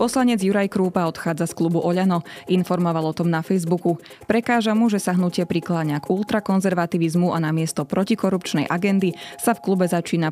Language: Slovak